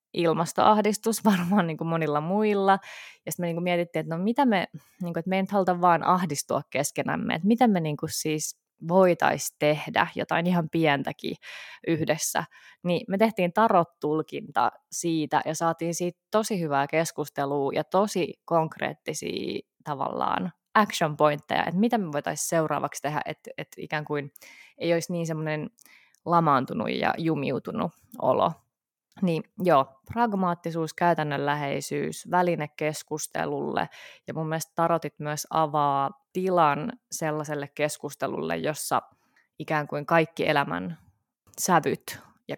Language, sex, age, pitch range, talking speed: Finnish, female, 20-39, 150-185 Hz, 130 wpm